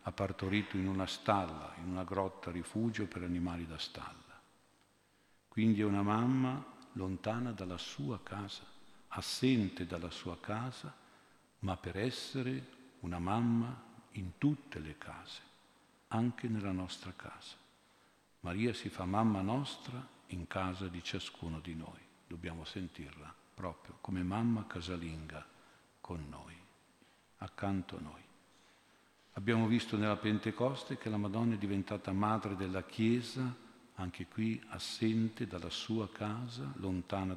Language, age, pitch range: Italian, 50-69, 90-115 Hz